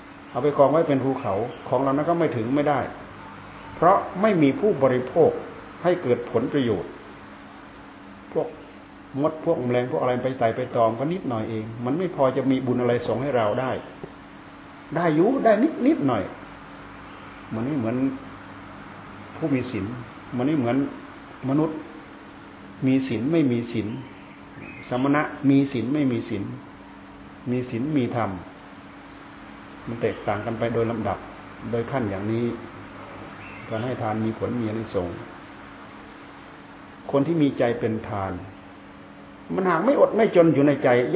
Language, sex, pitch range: Thai, male, 110-145 Hz